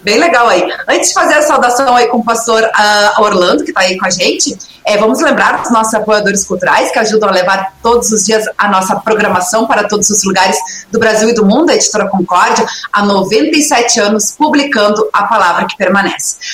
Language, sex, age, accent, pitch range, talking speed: Portuguese, female, 30-49, Brazilian, 195-230 Hz, 205 wpm